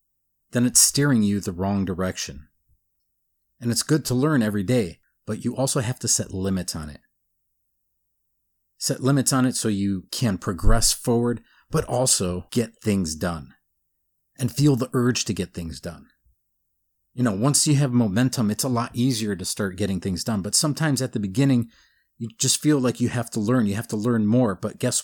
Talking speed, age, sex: 190 wpm, 40-59, male